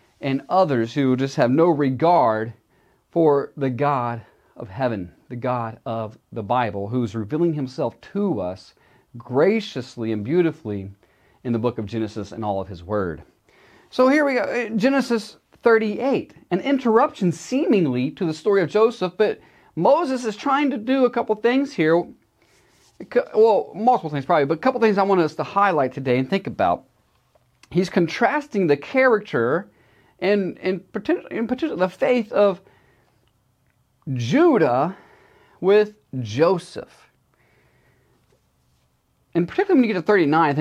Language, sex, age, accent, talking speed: English, male, 40-59, American, 150 wpm